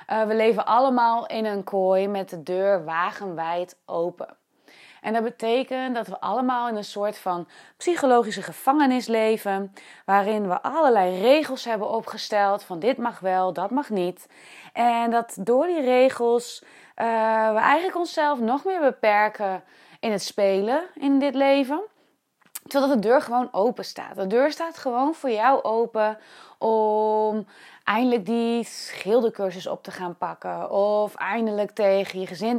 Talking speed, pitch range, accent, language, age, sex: 150 wpm, 185-245 Hz, Dutch, Dutch, 20-39, female